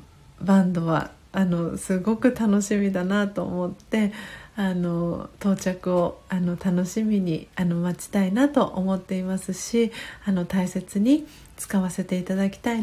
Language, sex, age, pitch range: Japanese, female, 40-59, 185-225 Hz